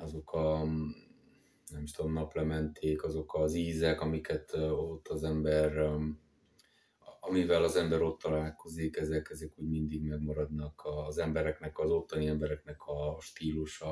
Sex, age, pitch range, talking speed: male, 20-39, 75-80 Hz, 130 wpm